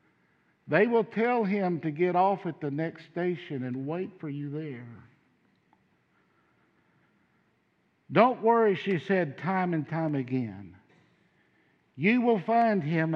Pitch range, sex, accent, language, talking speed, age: 145-185 Hz, male, American, English, 130 wpm, 60-79